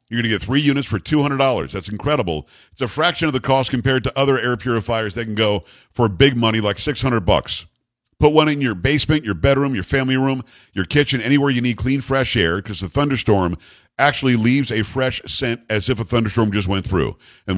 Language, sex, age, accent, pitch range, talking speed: English, male, 50-69, American, 105-135 Hz, 220 wpm